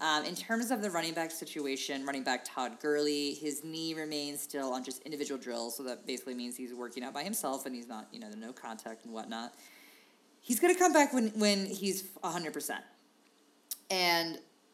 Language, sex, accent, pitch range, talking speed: English, female, American, 140-200 Hz, 200 wpm